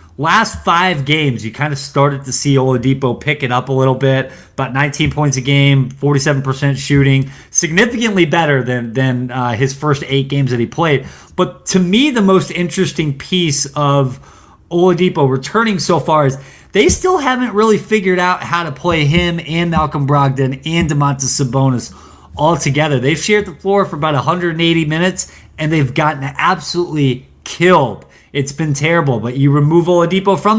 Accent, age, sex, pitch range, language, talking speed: American, 20-39, male, 135-175 Hz, English, 170 wpm